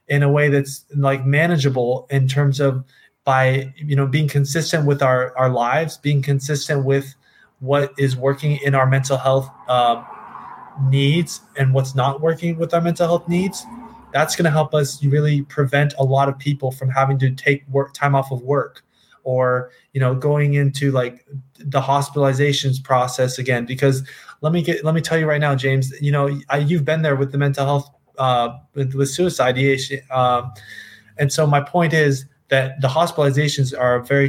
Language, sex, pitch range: English, male, 130-145 Hz